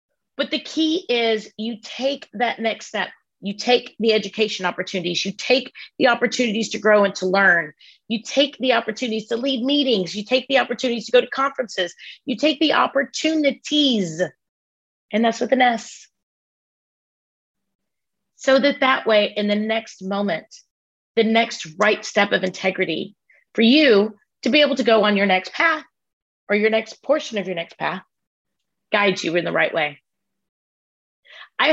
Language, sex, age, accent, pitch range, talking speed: English, female, 30-49, American, 200-265 Hz, 165 wpm